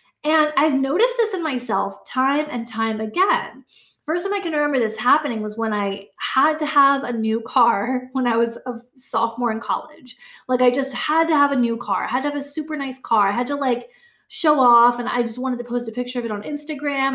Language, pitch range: English, 225-290 Hz